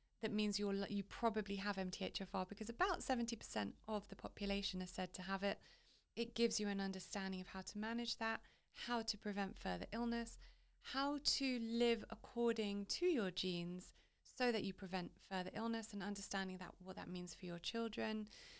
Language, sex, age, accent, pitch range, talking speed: English, female, 30-49, British, 195-230 Hz, 175 wpm